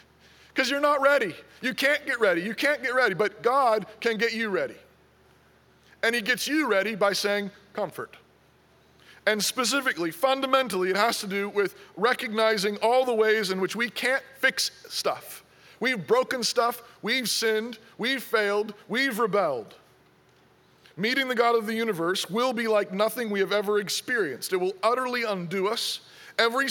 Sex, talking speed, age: male, 165 wpm, 40-59